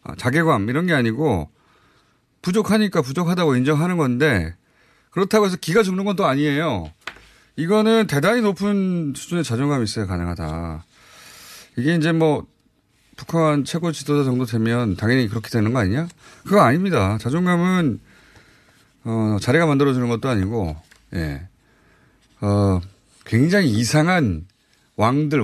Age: 30-49